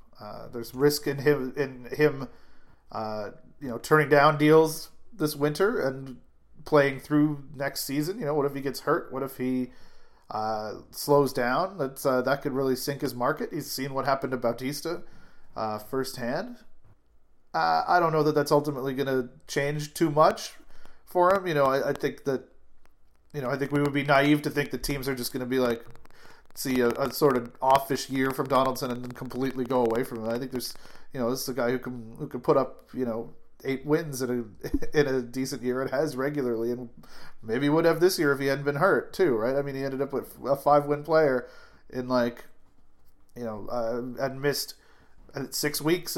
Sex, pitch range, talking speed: male, 125-150 Hz, 210 wpm